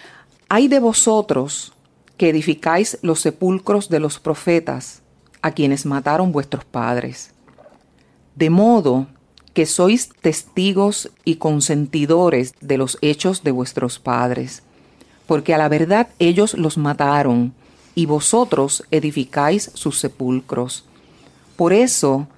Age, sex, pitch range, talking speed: 40-59, female, 135-175 Hz, 115 wpm